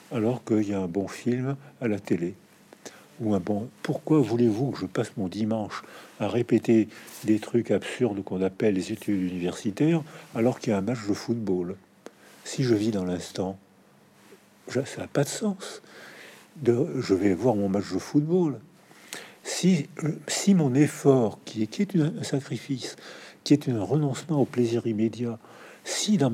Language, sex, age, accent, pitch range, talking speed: French, male, 50-69, French, 105-140 Hz, 165 wpm